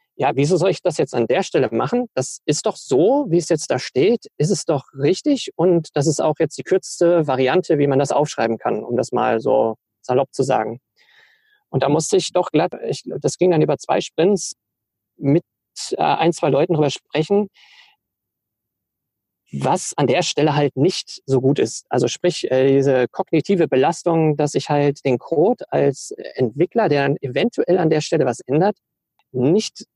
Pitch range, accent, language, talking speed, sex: 140-180 Hz, German, German, 185 wpm, male